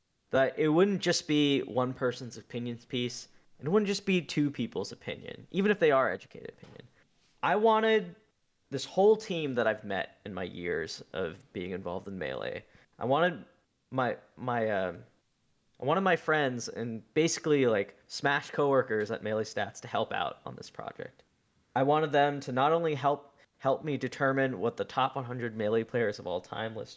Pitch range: 130-175 Hz